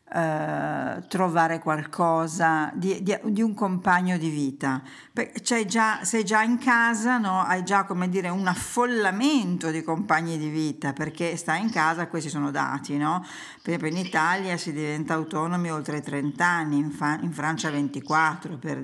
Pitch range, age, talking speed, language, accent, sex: 155-190 Hz, 50-69, 165 wpm, Italian, native, female